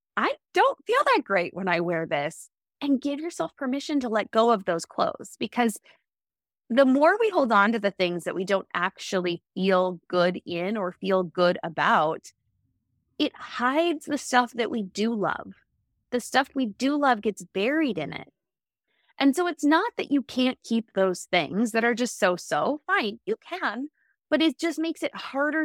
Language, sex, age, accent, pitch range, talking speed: English, female, 20-39, American, 200-285 Hz, 185 wpm